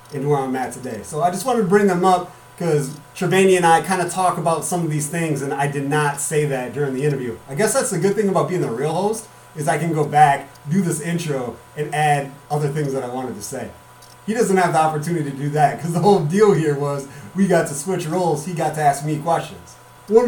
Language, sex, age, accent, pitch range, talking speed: English, male, 30-49, American, 140-180 Hz, 260 wpm